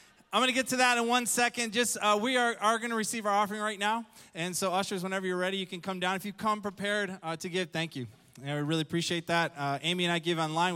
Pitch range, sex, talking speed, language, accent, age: 165-210 Hz, male, 285 wpm, English, American, 20-39